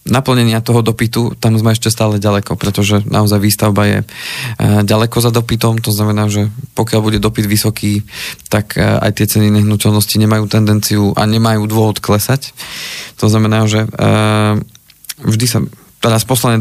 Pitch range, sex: 105-115 Hz, male